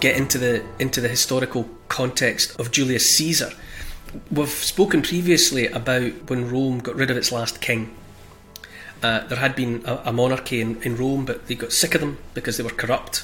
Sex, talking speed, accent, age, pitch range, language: male, 190 wpm, British, 30-49, 115-135 Hz, English